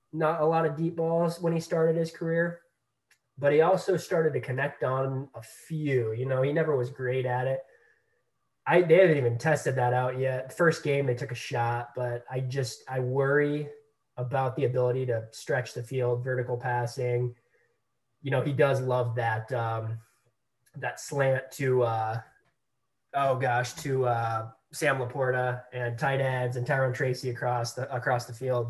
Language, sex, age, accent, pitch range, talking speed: English, male, 20-39, American, 120-150 Hz, 180 wpm